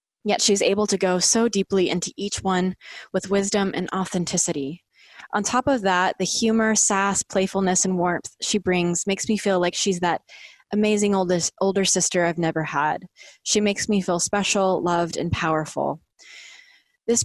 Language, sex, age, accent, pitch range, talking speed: English, female, 20-39, American, 160-200 Hz, 165 wpm